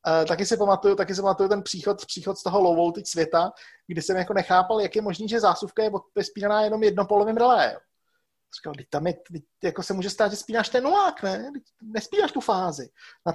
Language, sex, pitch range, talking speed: Czech, male, 175-230 Hz, 215 wpm